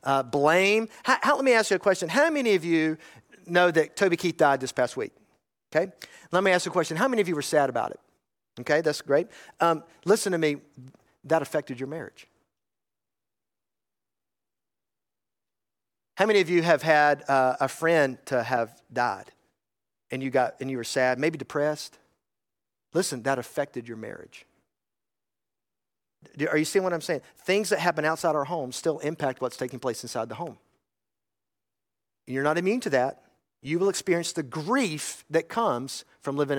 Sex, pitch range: male, 130-200 Hz